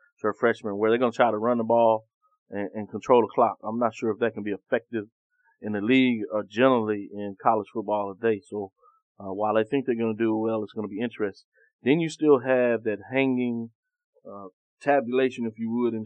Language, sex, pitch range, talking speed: English, male, 105-120 Hz, 230 wpm